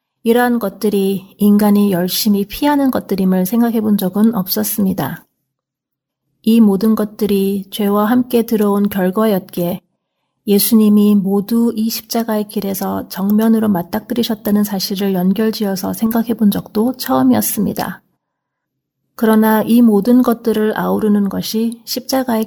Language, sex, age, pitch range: Korean, female, 30-49, 195-225 Hz